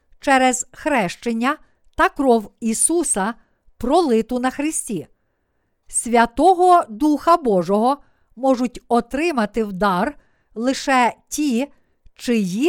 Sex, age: female, 50-69